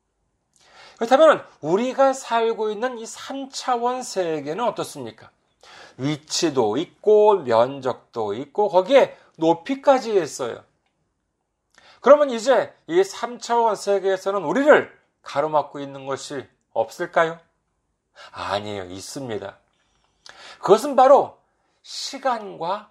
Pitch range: 175-270 Hz